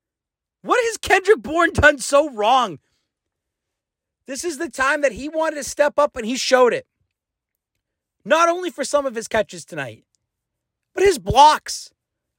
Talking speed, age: 155 wpm, 30-49